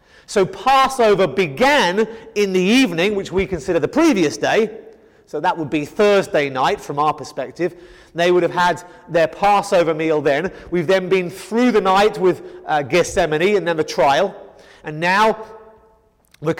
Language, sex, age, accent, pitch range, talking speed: English, male, 30-49, British, 160-210 Hz, 165 wpm